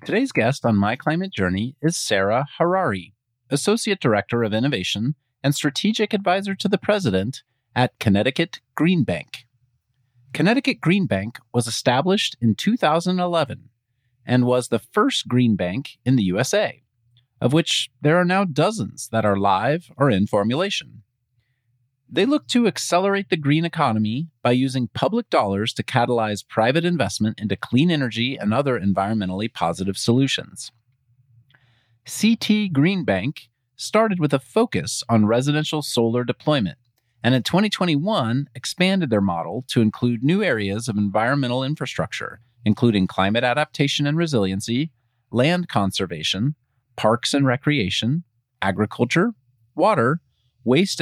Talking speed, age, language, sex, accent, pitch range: 130 wpm, 30-49, English, male, American, 115-155 Hz